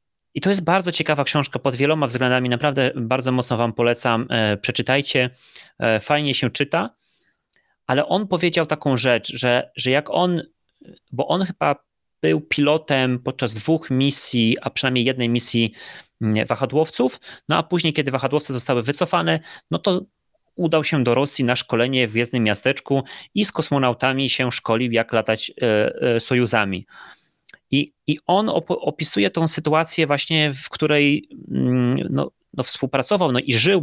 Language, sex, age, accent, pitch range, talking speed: Polish, male, 30-49, native, 125-160 Hz, 145 wpm